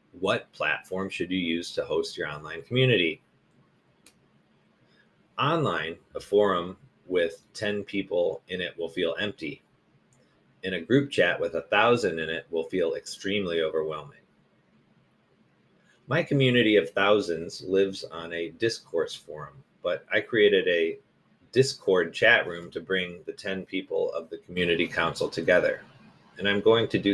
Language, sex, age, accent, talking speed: English, male, 30-49, American, 145 wpm